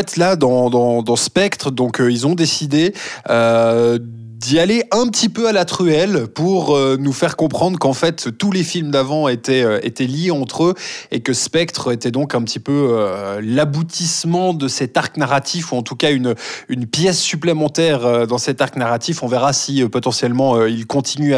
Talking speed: 200 wpm